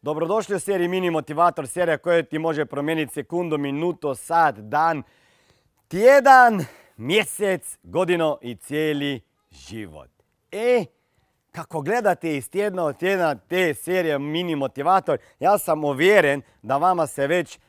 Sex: male